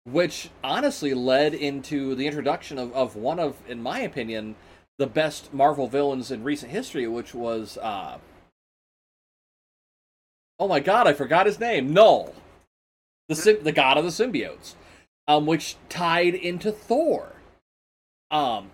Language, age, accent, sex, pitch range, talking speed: English, 30-49, American, male, 125-200 Hz, 140 wpm